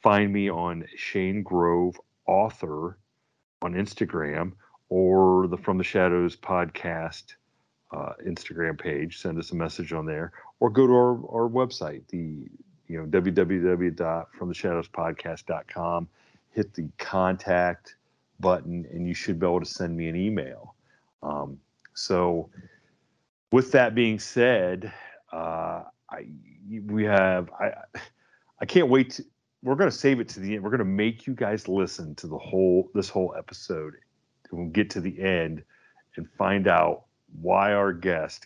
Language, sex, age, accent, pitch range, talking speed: English, male, 40-59, American, 90-115 Hz, 150 wpm